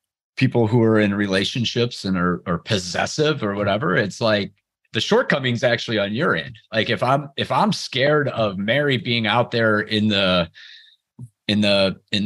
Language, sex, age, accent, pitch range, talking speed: English, male, 30-49, American, 95-125 Hz, 170 wpm